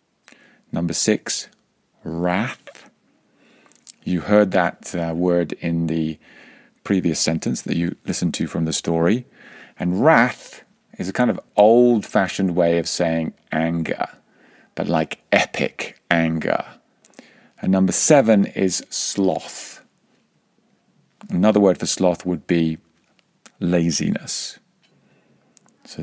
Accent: British